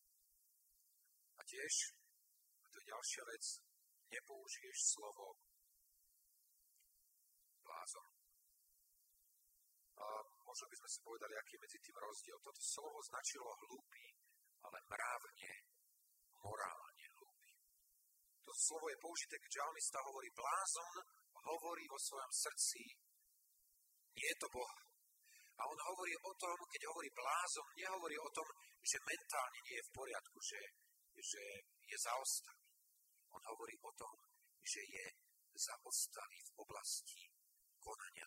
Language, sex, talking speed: Slovak, male, 115 wpm